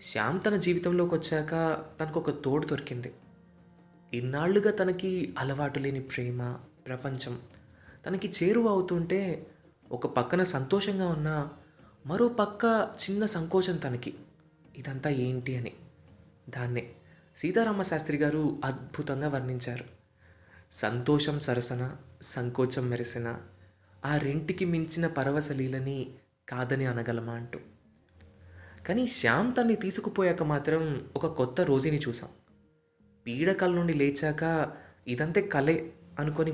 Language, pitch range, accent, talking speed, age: Telugu, 125-175 Hz, native, 100 wpm, 20-39